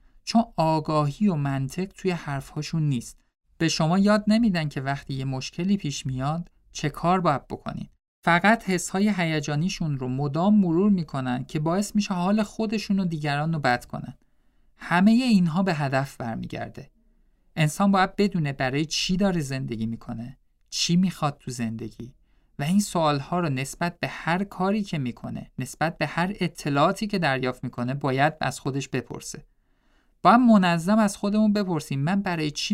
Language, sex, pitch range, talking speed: Persian, male, 130-185 Hz, 155 wpm